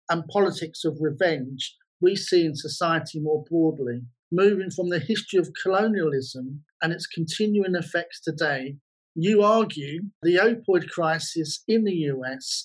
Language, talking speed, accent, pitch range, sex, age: English, 140 wpm, British, 155-180 Hz, male, 40-59